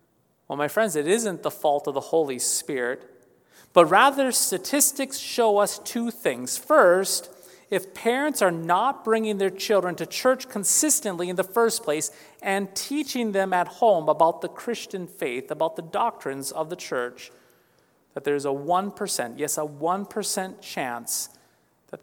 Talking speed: 155 wpm